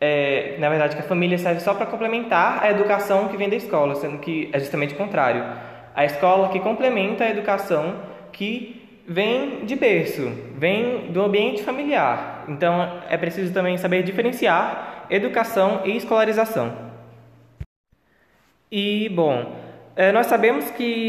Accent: Brazilian